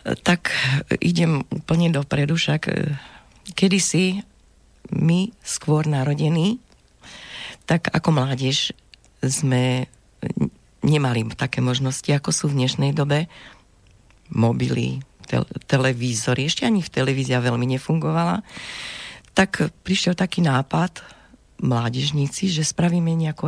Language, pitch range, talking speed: Slovak, 125-170 Hz, 95 wpm